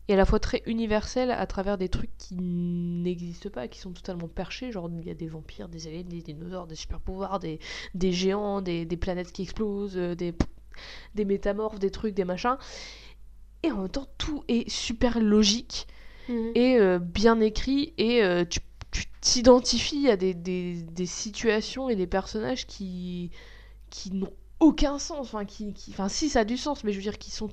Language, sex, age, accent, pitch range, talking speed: French, female, 20-39, French, 175-230 Hz, 195 wpm